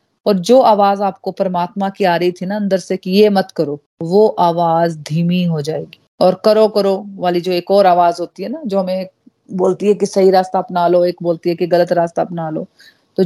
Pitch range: 175-215 Hz